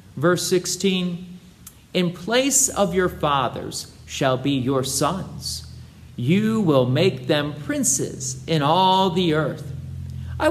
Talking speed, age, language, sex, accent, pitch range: 120 wpm, 50-69, English, male, American, 130-195 Hz